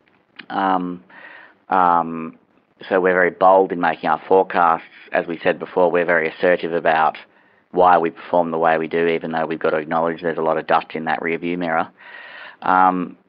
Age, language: 40-59, English